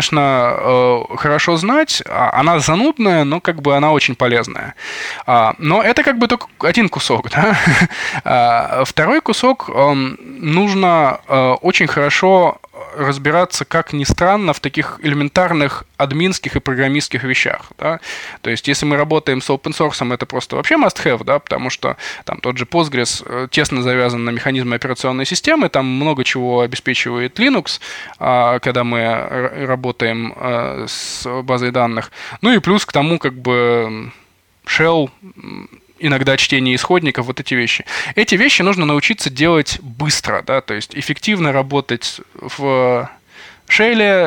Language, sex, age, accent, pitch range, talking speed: Russian, male, 20-39, native, 125-165 Hz, 130 wpm